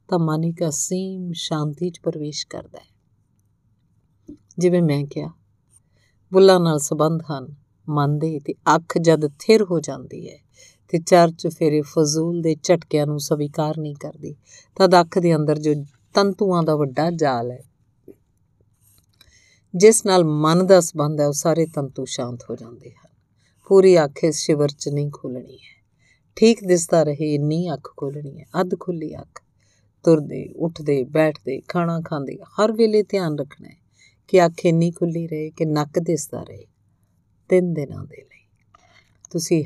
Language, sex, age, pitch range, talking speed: Punjabi, female, 50-69, 140-180 Hz, 145 wpm